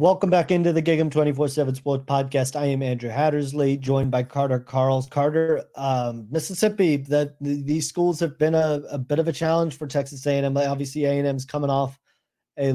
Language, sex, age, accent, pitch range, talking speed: English, male, 30-49, American, 135-155 Hz, 185 wpm